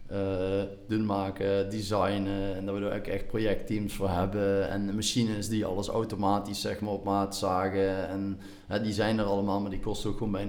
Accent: Dutch